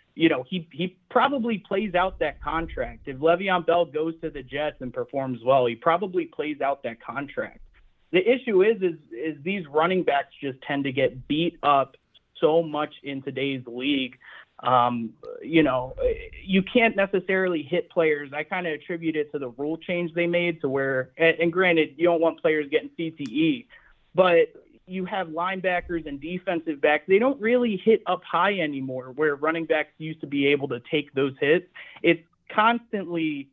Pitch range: 140-180 Hz